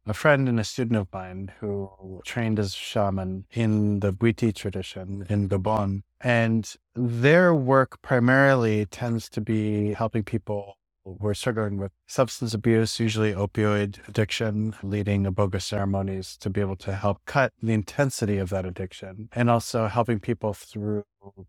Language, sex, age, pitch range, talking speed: English, male, 30-49, 100-115 Hz, 155 wpm